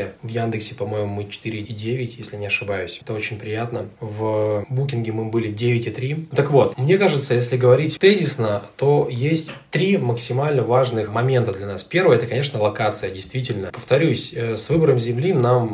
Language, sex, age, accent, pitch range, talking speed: Russian, male, 20-39, native, 110-130 Hz, 155 wpm